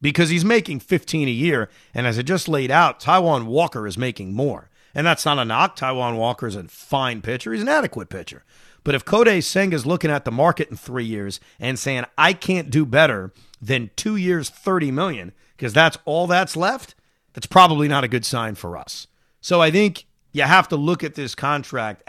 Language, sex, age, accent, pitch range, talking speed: English, male, 40-59, American, 120-160 Hz, 210 wpm